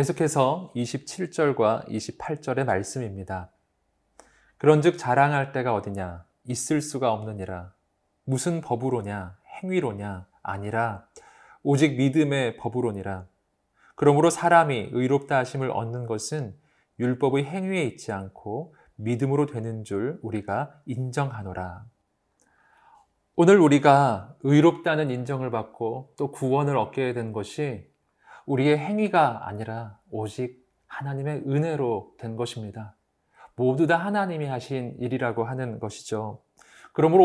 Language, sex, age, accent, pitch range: Korean, male, 20-39, native, 110-150 Hz